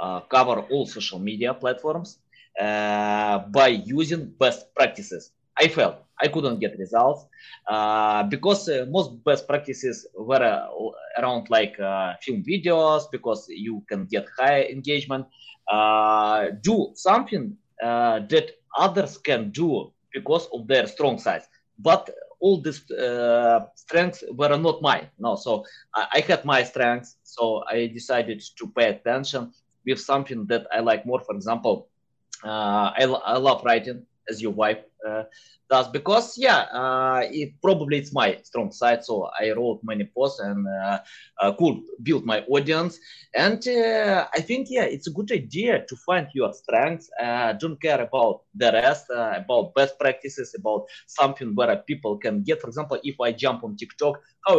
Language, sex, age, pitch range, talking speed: English, male, 20-39, 115-180 Hz, 160 wpm